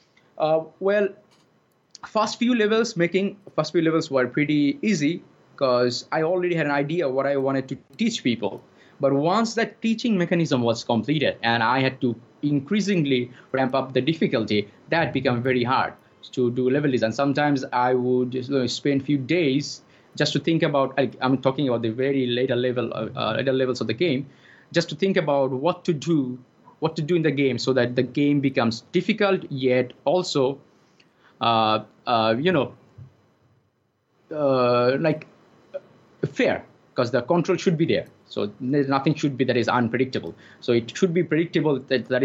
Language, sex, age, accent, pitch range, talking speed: English, male, 20-39, Indian, 125-160 Hz, 170 wpm